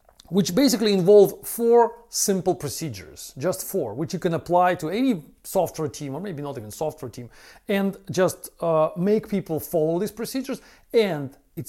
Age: 40-59